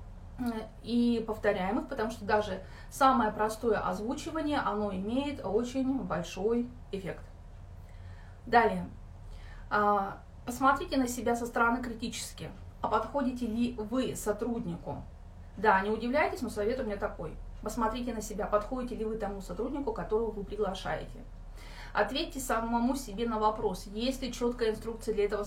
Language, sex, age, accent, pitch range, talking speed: Russian, female, 30-49, native, 200-240 Hz, 130 wpm